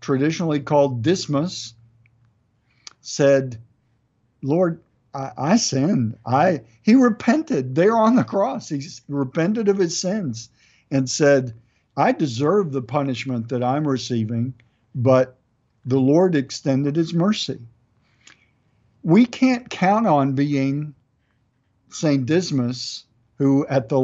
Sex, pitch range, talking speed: male, 120-170 Hz, 110 wpm